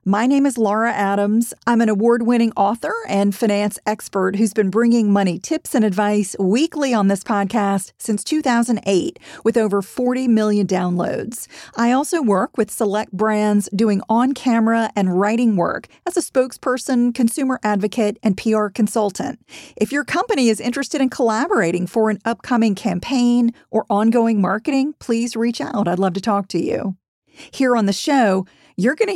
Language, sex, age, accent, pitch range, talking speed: English, female, 40-59, American, 205-250 Hz, 160 wpm